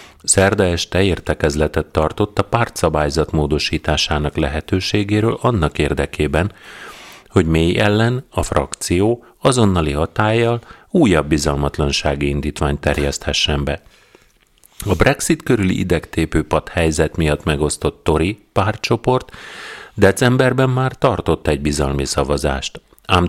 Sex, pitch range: male, 75-100 Hz